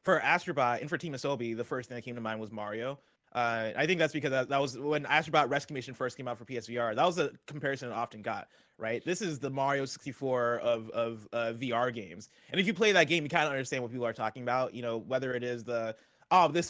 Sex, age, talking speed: male, 20-39, 260 wpm